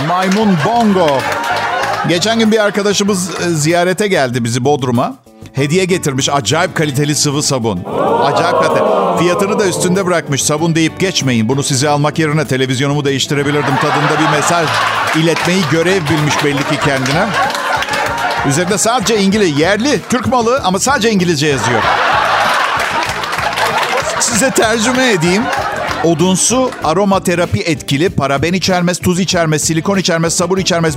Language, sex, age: Turkish, male, 50-69